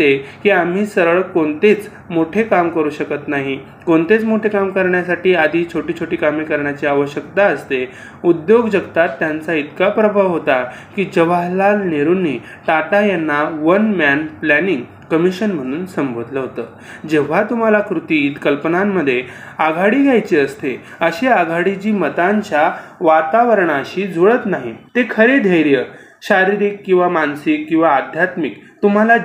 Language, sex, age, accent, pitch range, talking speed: Marathi, male, 30-49, native, 155-205 Hz, 125 wpm